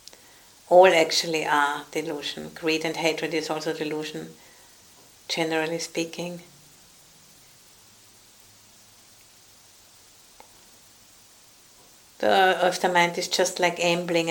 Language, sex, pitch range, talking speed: English, female, 150-175 Hz, 85 wpm